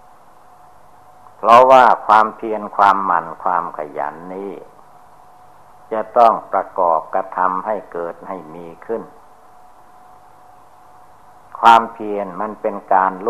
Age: 60-79